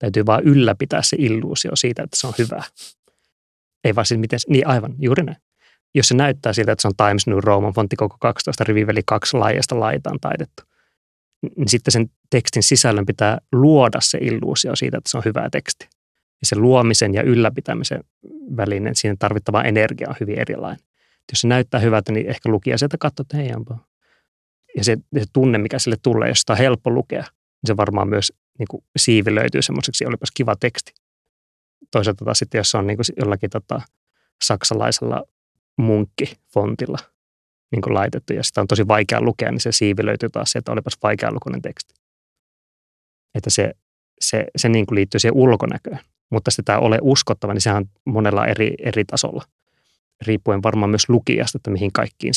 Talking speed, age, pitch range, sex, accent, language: 180 wpm, 30-49, 105-125 Hz, male, native, Finnish